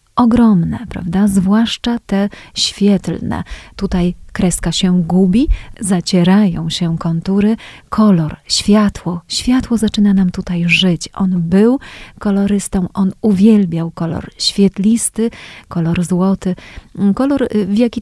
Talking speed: 105 wpm